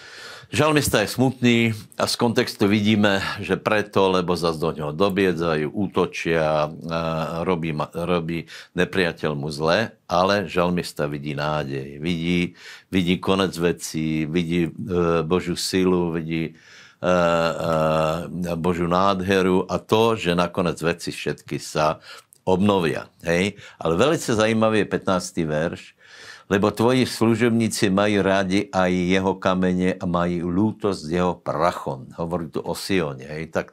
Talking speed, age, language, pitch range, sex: 125 wpm, 60-79, Slovak, 85-105 Hz, male